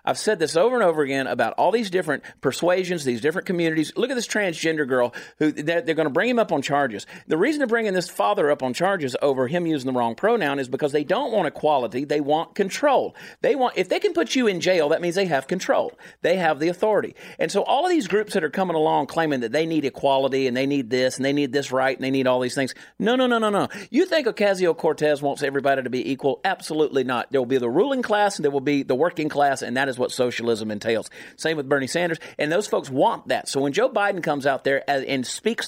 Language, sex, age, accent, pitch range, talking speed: English, male, 40-59, American, 135-215 Hz, 260 wpm